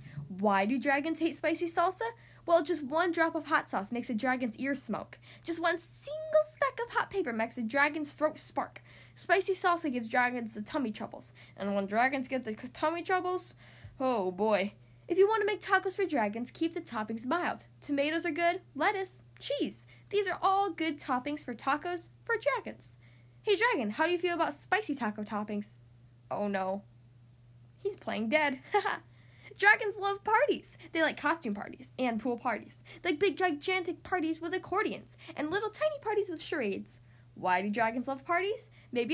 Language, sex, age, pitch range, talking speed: English, female, 10-29, 210-345 Hz, 180 wpm